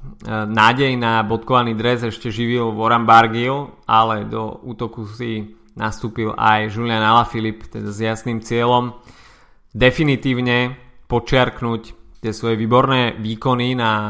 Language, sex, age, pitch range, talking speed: Slovak, male, 20-39, 110-125 Hz, 115 wpm